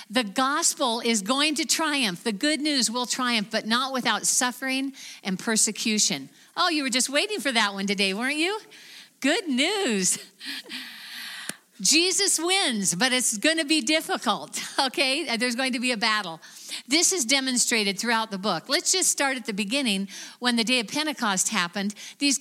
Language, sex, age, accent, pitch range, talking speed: English, female, 50-69, American, 220-280 Hz, 170 wpm